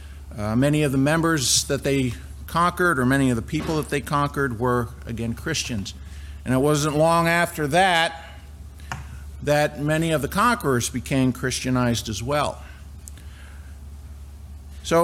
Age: 50-69